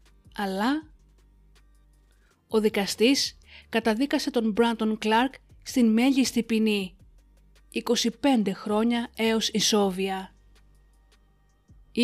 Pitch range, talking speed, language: 210-255 Hz, 75 wpm, Greek